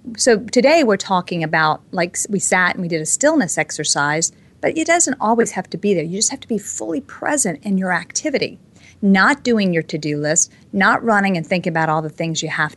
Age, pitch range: 40-59, 160-220 Hz